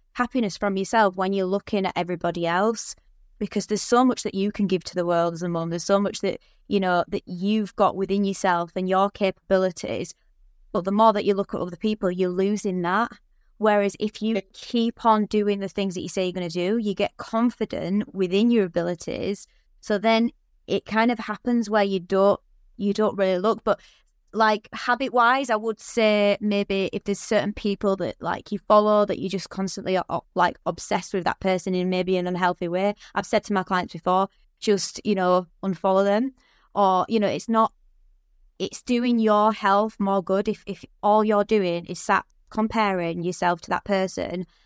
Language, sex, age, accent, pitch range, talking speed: English, female, 20-39, British, 185-215 Hz, 200 wpm